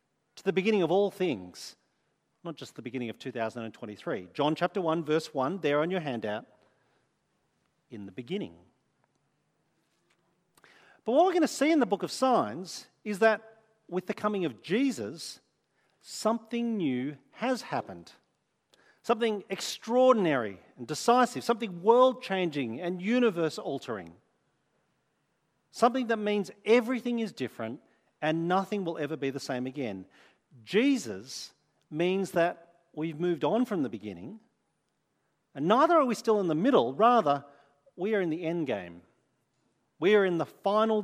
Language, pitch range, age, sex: English, 140-215 Hz, 40-59, male